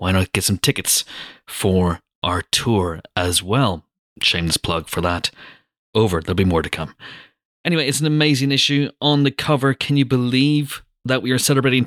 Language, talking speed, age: English, 175 wpm, 30-49